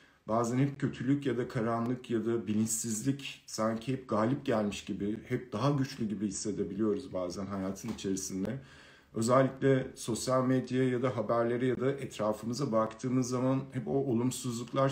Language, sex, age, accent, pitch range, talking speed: Turkish, male, 50-69, native, 110-135 Hz, 145 wpm